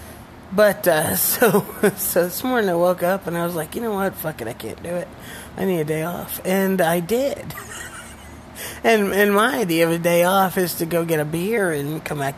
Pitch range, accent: 155-205 Hz, American